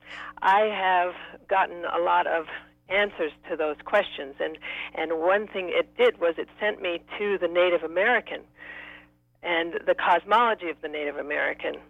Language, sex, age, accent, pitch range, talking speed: English, female, 60-79, American, 155-190 Hz, 155 wpm